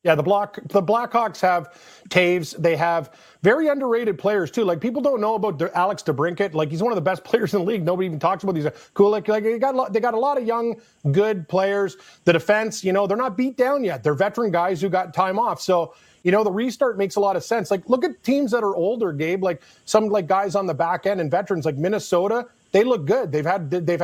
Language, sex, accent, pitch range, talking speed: English, male, American, 170-215 Hz, 255 wpm